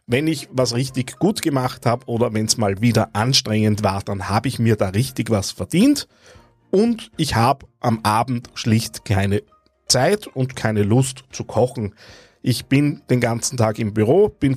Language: German